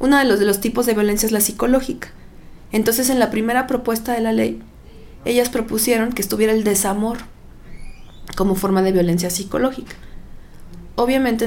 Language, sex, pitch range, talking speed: Spanish, female, 200-245 Hz, 160 wpm